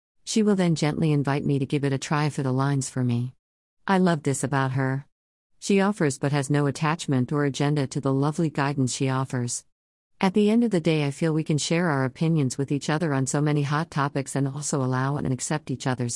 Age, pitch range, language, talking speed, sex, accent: 50-69, 130-155 Hz, English, 235 wpm, female, American